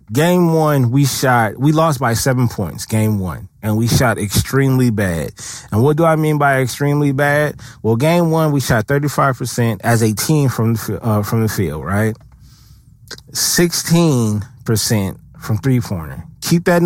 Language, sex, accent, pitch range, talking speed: English, male, American, 115-165 Hz, 160 wpm